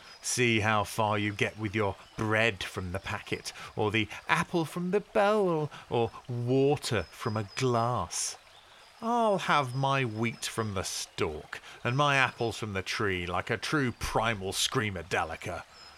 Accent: British